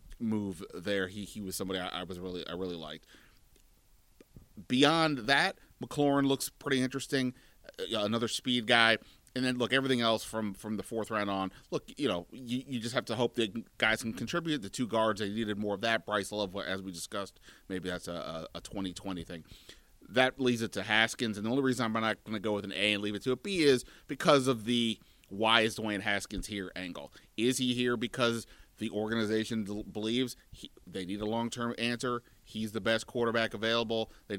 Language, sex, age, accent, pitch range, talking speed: English, male, 30-49, American, 100-120 Hz, 205 wpm